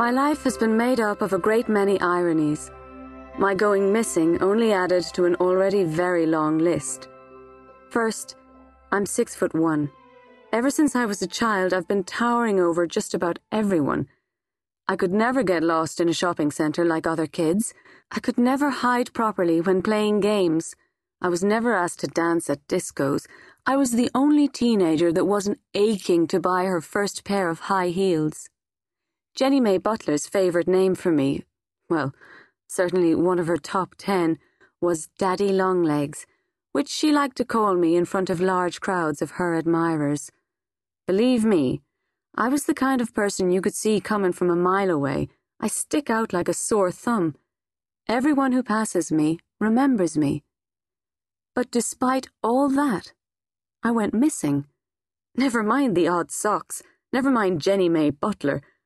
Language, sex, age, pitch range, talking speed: English, female, 30-49, 165-225 Hz, 160 wpm